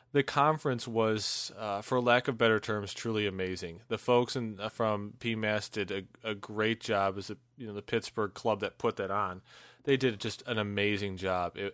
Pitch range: 100-115 Hz